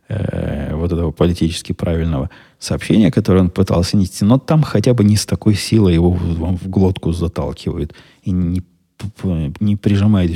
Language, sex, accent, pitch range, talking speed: Russian, male, native, 85-100 Hz, 155 wpm